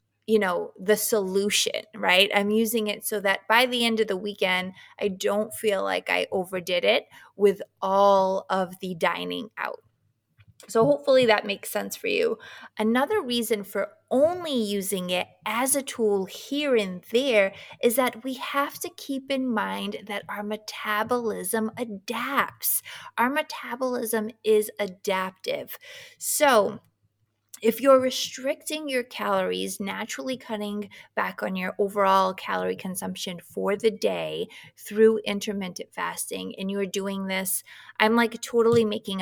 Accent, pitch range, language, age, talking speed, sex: American, 185-230 Hz, English, 20-39, 140 wpm, female